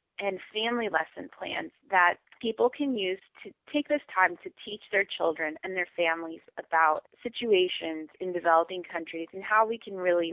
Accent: American